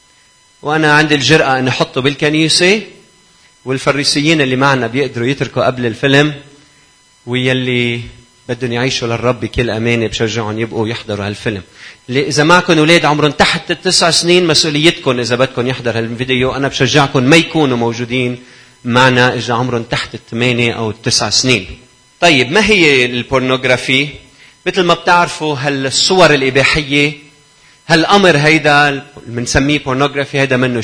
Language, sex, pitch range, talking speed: Arabic, male, 125-165 Hz, 125 wpm